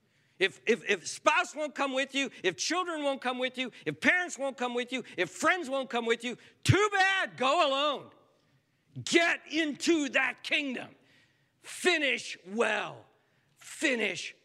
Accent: American